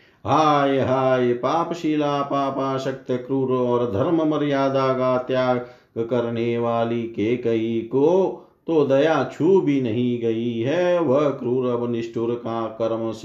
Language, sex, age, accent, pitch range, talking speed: Hindi, male, 50-69, native, 115-155 Hz, 125 wpm